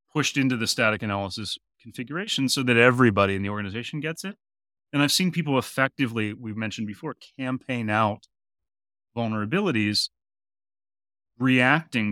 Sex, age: male, 30-49